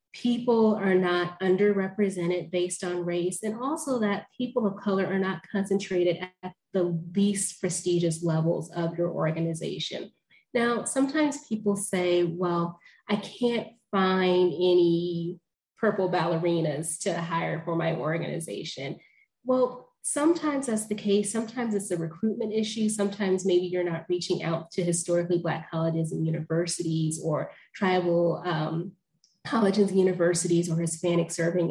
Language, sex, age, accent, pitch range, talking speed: English, female, 20-39, American, 170-200 Hz, 130 wpm